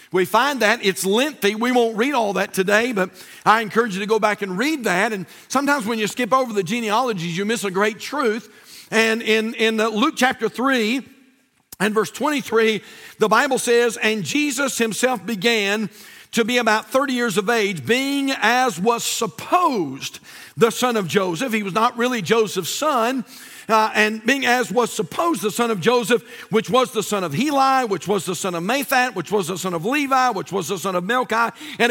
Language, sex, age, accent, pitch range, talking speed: English, male, 50-69, American, 215-260 Hz, 200 wpm